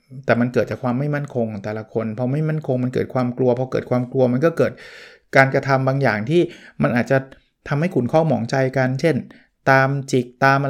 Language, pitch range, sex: Thai, 120-150 Hz, male